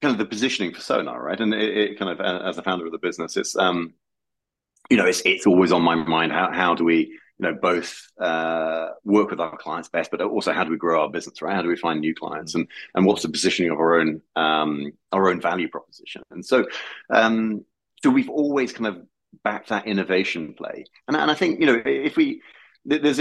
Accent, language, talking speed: British, English, 235 wpm